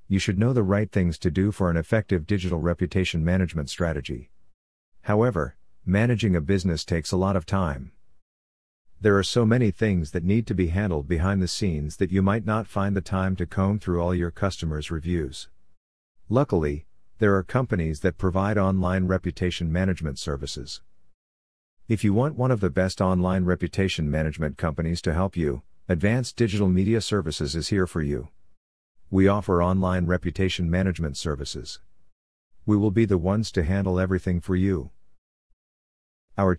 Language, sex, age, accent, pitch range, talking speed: English, male, 50-69, American, 85-100 Hz, 165 wpm